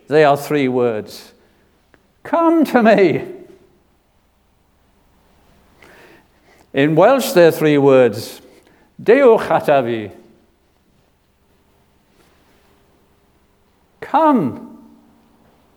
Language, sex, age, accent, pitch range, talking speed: English, male, 60-79, British, 120-175 Hz, 55 wpm